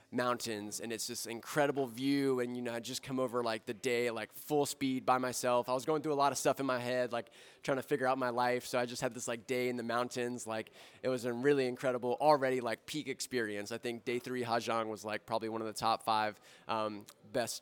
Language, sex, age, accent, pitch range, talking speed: English, male, 20-39, American, 125-155 Hz, 250 wpm